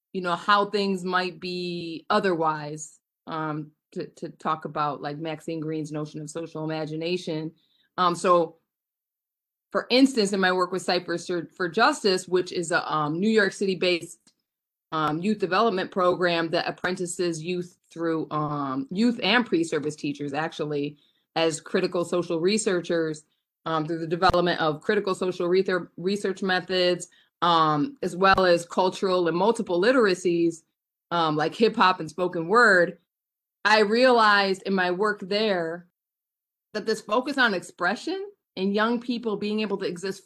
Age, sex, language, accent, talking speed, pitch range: 20-39, female, English, American, 150 wpm, 165-195 Hz